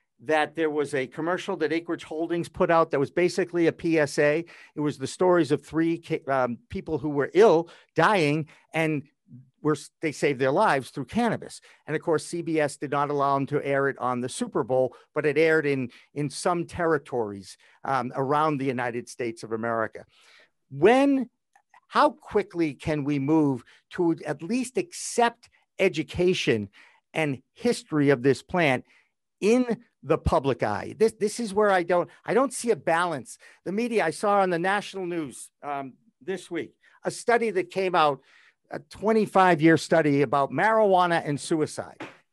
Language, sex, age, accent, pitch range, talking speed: English, male, 50-69, American, 145-190 Hz, 170 wpm